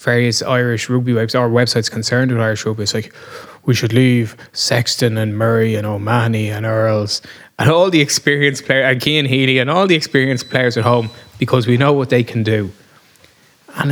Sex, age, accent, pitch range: male, 20-39, Irish, 115-155 Hz